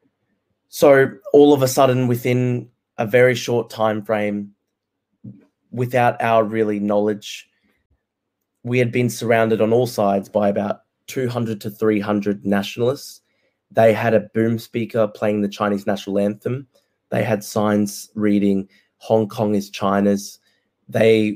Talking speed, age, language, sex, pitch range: 130 wpm, 20-39, Italian, male, 100-115 Hz